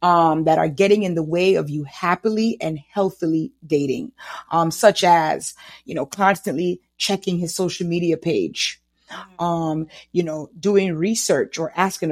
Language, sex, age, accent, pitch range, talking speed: English, female, 30-49, American, 160-210 Hz, 155 wpm